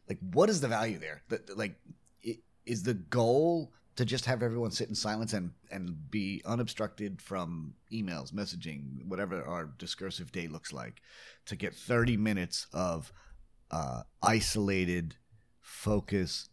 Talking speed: 150 wpm